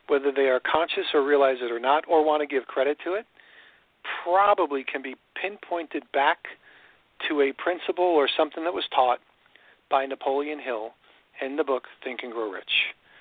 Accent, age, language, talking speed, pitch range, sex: American, 50-69, English, 175 wpm, 130-155 Hz, male